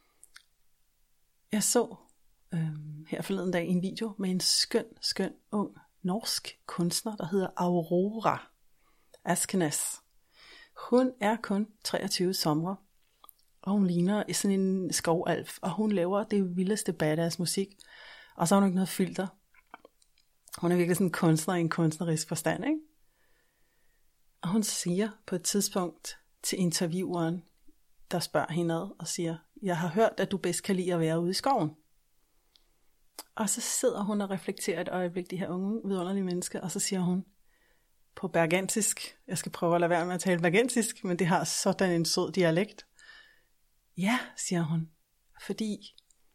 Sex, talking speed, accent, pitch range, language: female, 155 wpm, native, 175-205 Hz, Danish